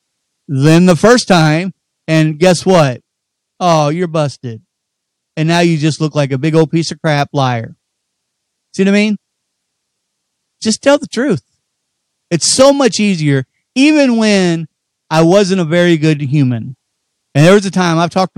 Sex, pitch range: male, 145-185 Hz